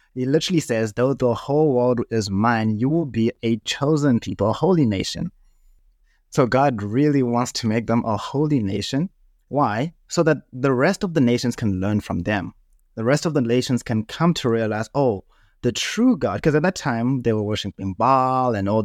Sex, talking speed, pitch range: male, 200 wpm, 105-140 Hz